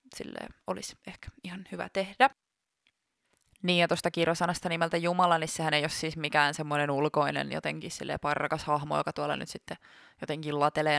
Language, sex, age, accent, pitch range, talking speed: Finnish, female, 20-39, native, 150-200 Hz, 155 wpm